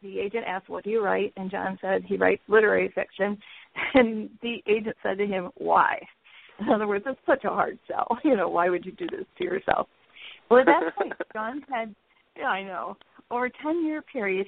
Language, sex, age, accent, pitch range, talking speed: English, female, 40-59, American, 195-235 Hz, 210 wpm